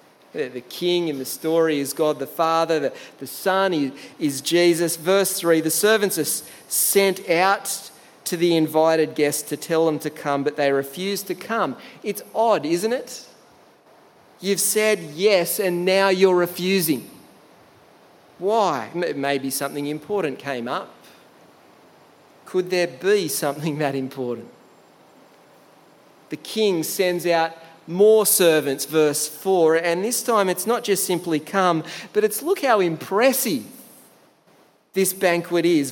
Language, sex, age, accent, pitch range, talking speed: English, male, 40-59, Australian, 155-200 Hz, 140 wpm